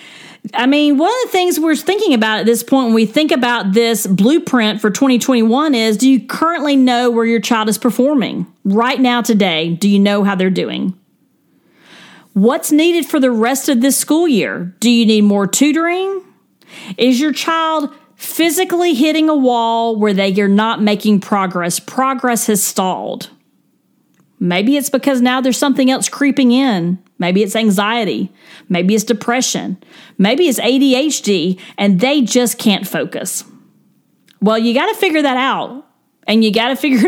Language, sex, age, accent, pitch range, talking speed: English, female, 40-59, American, 210-280 Hz, 165 wpm